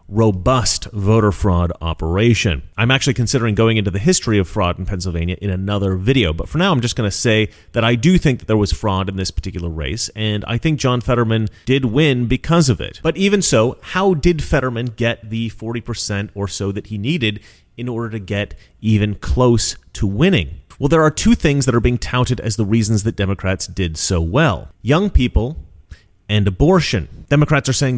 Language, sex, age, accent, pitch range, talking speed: English, male, 30-49, American, 95-135 Hz, 205 wpm